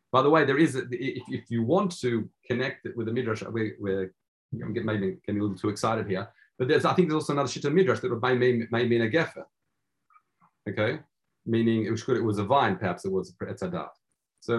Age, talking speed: 30-49, 235 wpm